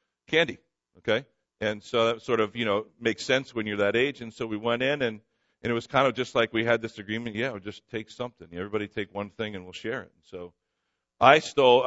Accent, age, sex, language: American, 50-69, male, English